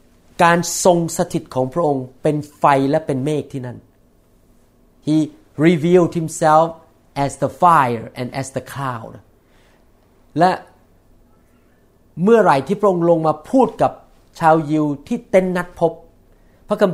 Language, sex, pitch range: Thai, male, 130-175 Hz